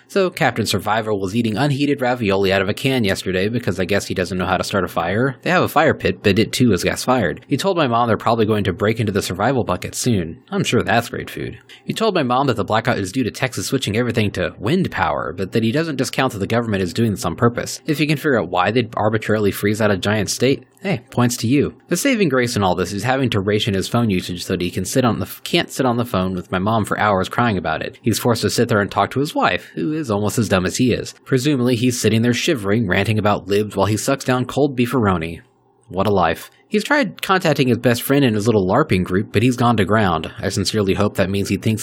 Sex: male